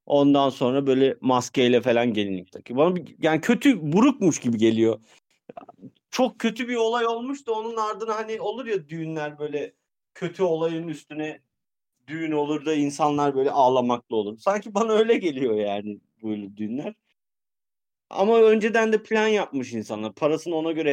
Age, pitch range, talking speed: 40-59, 135-190 Hz, 145 wpm